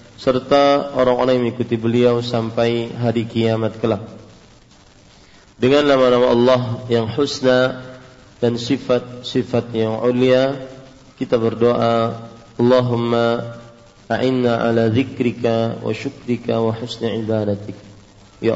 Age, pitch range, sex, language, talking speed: 40-59, 115-135 Hz, male, English, 95 wpm